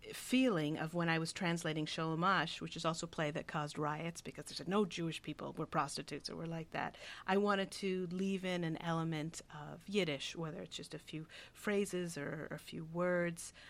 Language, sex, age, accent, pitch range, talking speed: English, female, 40-59, American, 155-185 Hz, 200 wpm